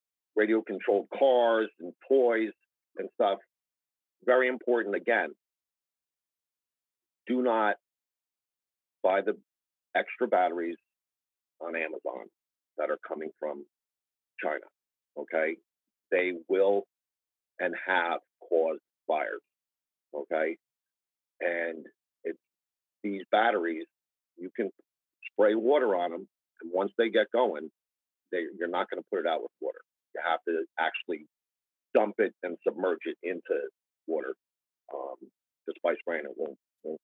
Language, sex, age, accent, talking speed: English, male, 50-69, American, 120 wpm